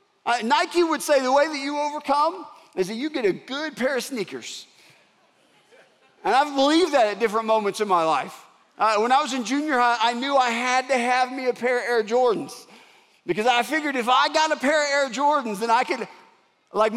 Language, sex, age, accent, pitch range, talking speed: English, male, 40-59, American, 225-280 Hz, 215 wpm